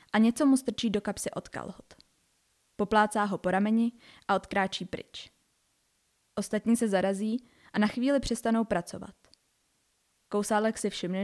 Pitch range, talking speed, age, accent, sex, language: 200-240 Hz, 140 wpm, 20-39, native, female, Czech